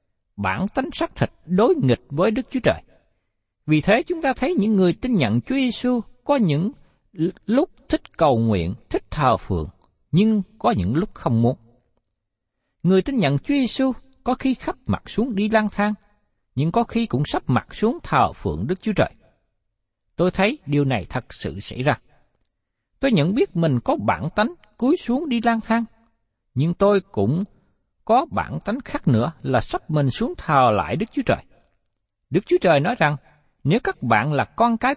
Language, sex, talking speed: Vietnamese, male, 190 wpm